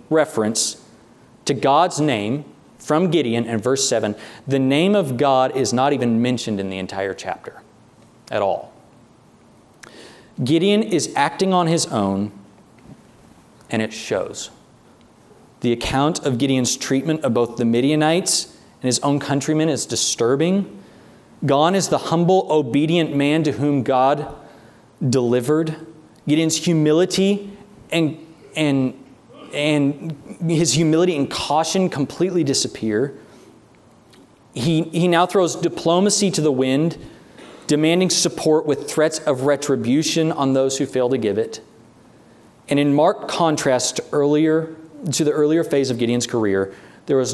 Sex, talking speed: male, 130 wpm